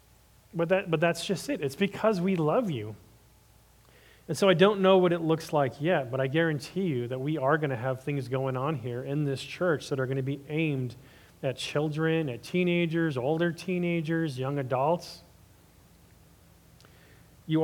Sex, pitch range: male, 125-165 Hz